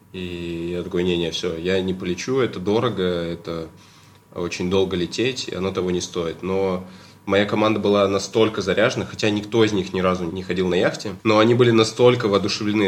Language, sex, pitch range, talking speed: Russian, male, 90-105 Hz, 185 wpm